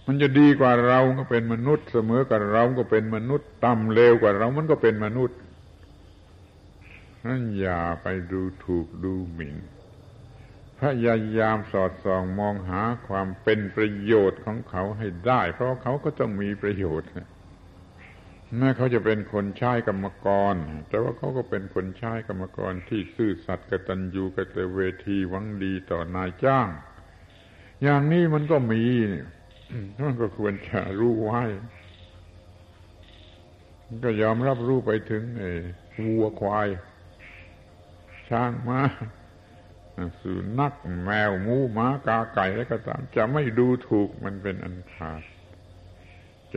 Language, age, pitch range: Thai, 60-79, 90-115 Hz